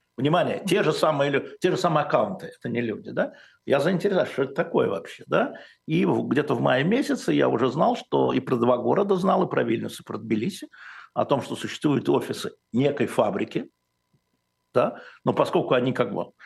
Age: 60-79